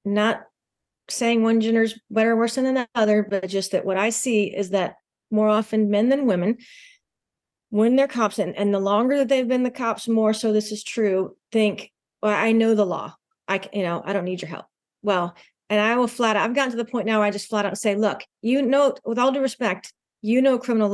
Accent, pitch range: American, 200-230 Hz